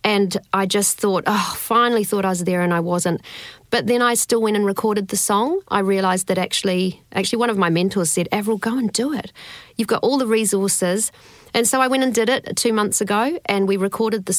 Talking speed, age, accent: 235 wpm, 40-59, Australian